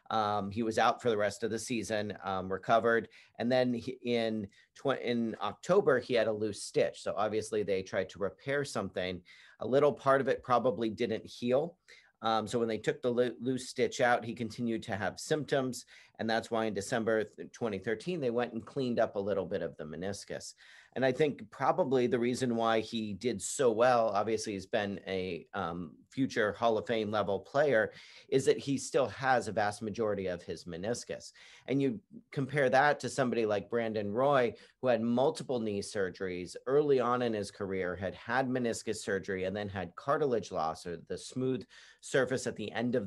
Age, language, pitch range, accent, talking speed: 40-59, English, 100-125 Hz, American, 195 wpm